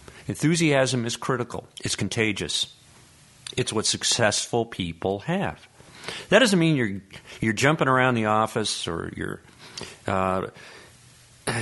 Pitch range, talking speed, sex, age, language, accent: 95-130 Hz, 115 wpm, male, 50-69, English, American